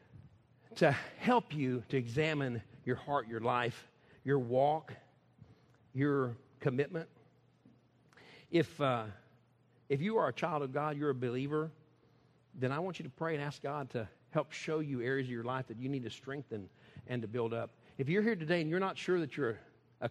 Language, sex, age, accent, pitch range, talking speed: English, male, 50-69, American, 125-165 Hz, 185 wpm